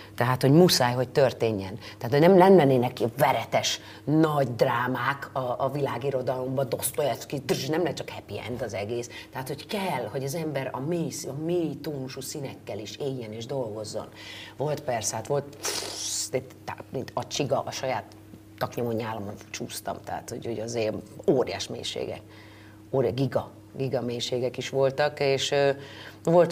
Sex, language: female, Hungarian